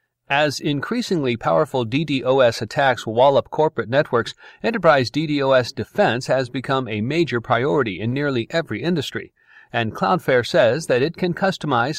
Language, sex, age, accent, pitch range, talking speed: English, male, 40-59, American, 115-150 Hz, 135 wpm